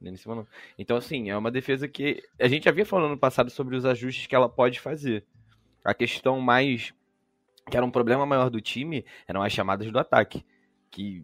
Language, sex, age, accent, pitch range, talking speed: Portuguese, male, 20-39, Brazilian, 100-125 Hz, 185 wpm